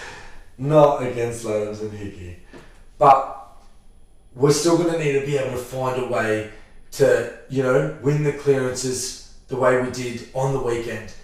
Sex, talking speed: male, 165 wpm